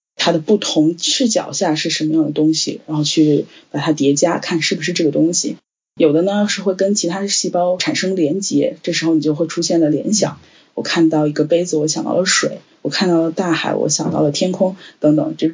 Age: 10-29